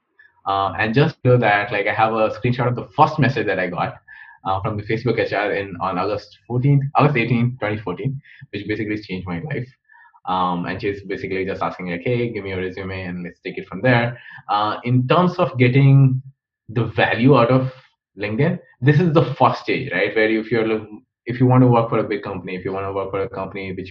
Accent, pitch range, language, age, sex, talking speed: native, 105-135 Hz, Hindi, 20-39, male, 230 wpm